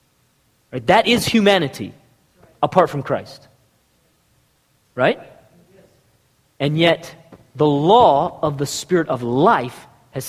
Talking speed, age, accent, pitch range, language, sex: 105 wpm, 40-59, American, 155-240 Hz, English, male